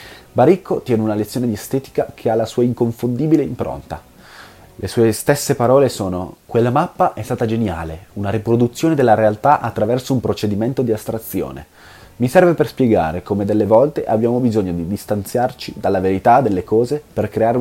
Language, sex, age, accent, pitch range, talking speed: Italian, male, 30-49, native, 95-125 Hz, 165 wpm